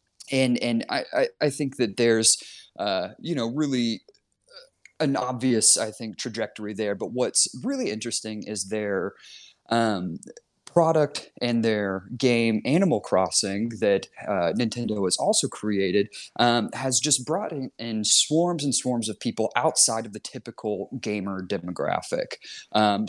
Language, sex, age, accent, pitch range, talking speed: English, male, 30-49, American, 105-135 Hz, 145 wpm